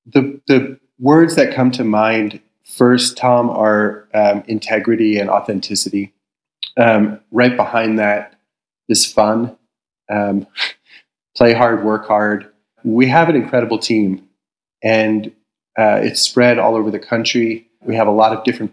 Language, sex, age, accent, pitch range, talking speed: English, male, 30-49, American, 105-125 Hz, 140 wpm